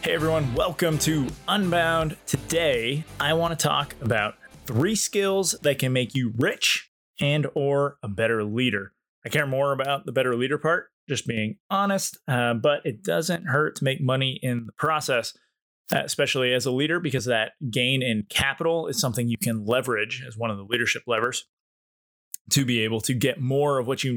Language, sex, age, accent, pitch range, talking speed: English, male, 20-39, American, 120-155 Hz, 185 wpm